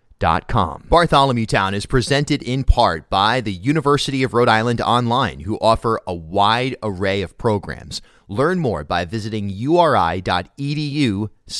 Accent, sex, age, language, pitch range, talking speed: American, male, 30-49, English, 100-120 Hz, 135 wpm